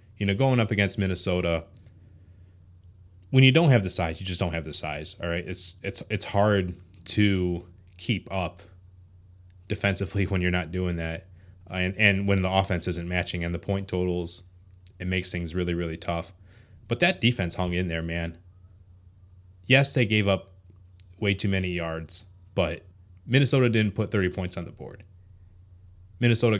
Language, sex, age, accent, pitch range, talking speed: English, male, 20-39, American, 90-100 Hz, 170 wpm